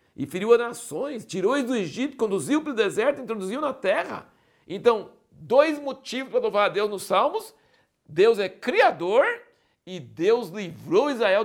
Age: 60-79